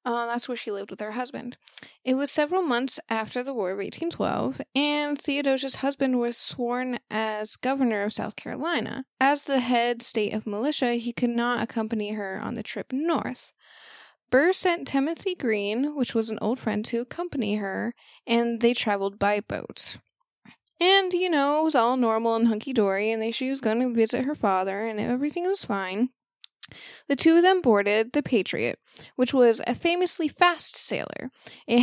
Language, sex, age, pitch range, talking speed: English, female, 20-39, 225-295 Hz, 175 wpm